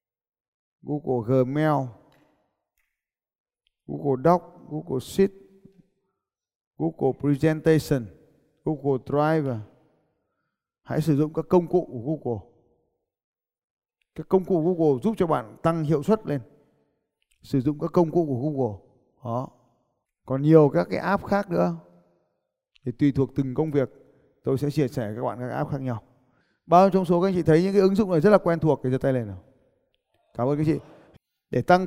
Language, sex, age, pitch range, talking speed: Vietnamese, male, 20-39, 130-175 Hz, 170 wpm